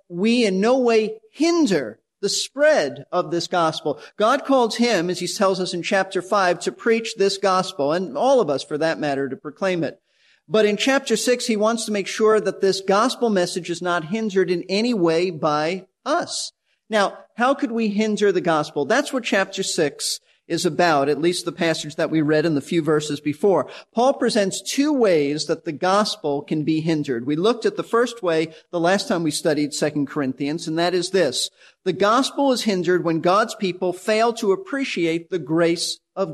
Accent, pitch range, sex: American, 165-220 Hz, male